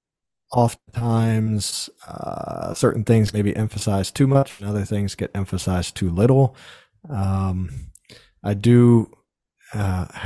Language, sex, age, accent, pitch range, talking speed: English, male, 40-59, American, 85-105 Hz, 115 wpm